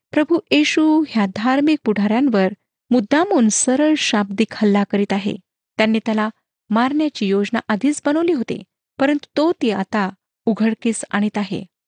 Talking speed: 125 wpm